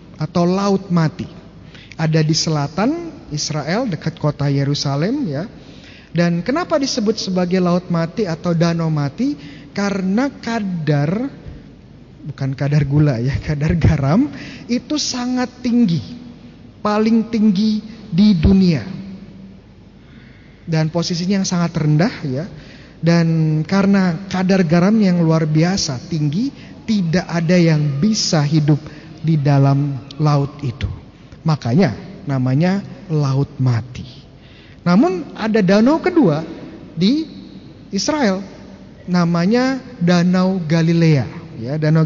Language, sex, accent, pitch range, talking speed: Indonesian, male, native, 150-195 Hz, 105 wpm